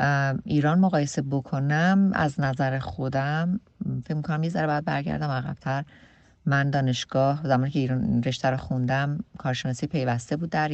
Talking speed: 145 wpm